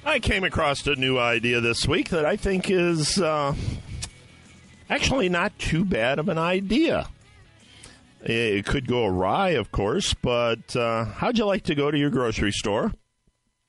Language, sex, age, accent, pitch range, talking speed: English, male, 50-69, American, 115-155 Hz, 160 wpm